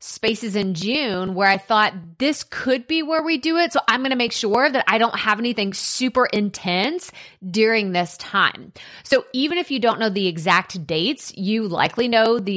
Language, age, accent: English, 30-49, American